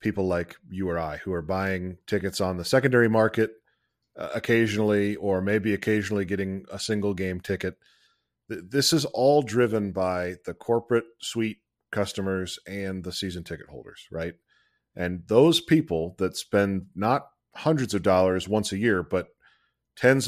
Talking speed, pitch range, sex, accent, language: 150 wpm, 95-115 Hz, male, American, English